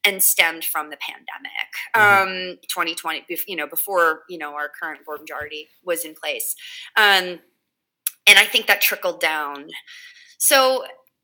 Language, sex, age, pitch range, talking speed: English, female, 30-49, 170-250 Hz, 145 wpm